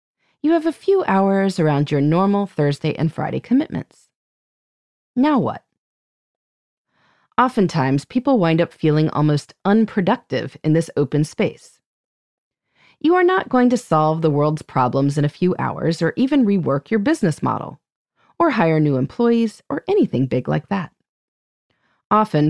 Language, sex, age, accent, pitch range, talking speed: English, female, 30-49, American, 155-250 Hz, 145 wpm